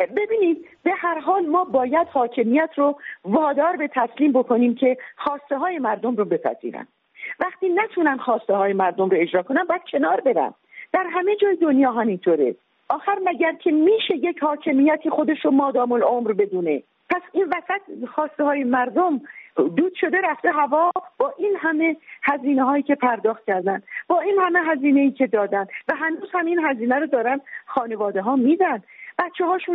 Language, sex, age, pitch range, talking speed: English, female, 40-59, 235-340 Hz, 155 wpm